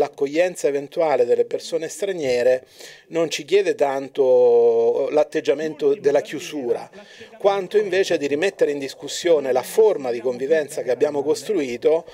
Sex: male